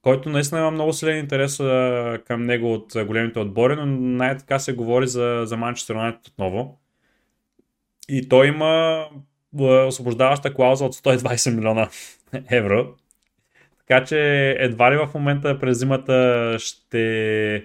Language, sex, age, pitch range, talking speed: Bulgarian, male, 20-39, 120-140 Hz, 120 wpm